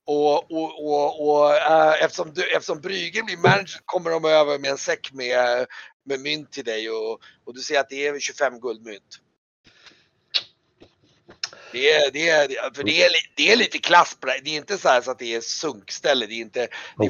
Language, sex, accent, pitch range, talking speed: Swedish, male, native, 125-155 Hz, 200 wpm